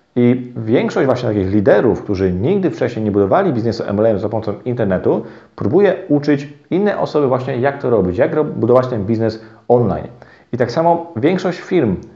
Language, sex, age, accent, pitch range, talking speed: Polish, male, 40-59, native, 110-130 Hz, 165 wpm